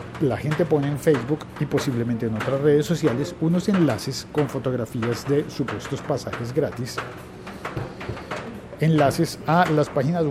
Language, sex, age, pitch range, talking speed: Spanish, male, 50-69, 125-155 Hz, 135 wpm